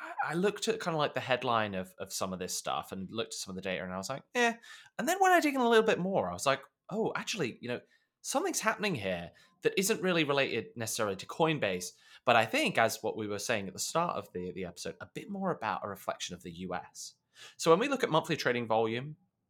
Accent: British